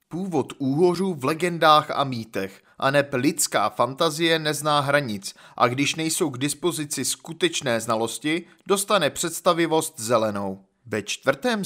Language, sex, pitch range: Czech, male, 120-180 Hz